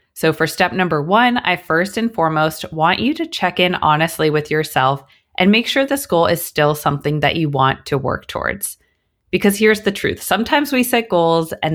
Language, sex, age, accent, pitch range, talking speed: English, female, 20-39, American, 145-200 Hz, 205 wpm